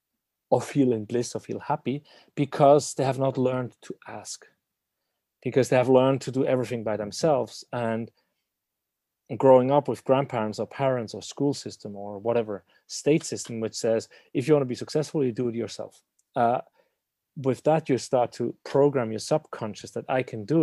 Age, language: 30-49, English